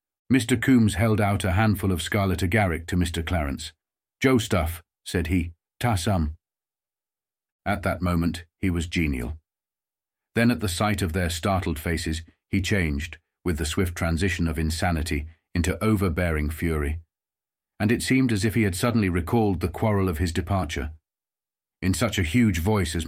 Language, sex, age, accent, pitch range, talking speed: English, male, 40-59, British, 85-105 Hz, 165 wpm